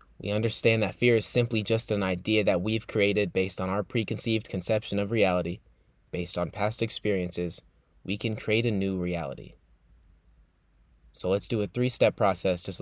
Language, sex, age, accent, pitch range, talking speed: English, male, 20-39, American, 90-115 Hz, 175 wpm